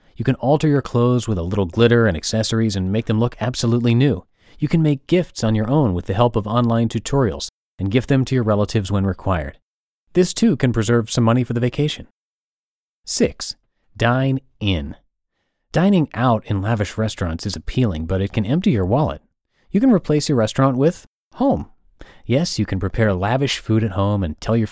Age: 30-49